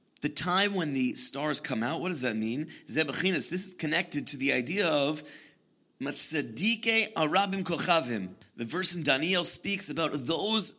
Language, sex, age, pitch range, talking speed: English, male, 30-49, 155-215 Hz, 160 wpm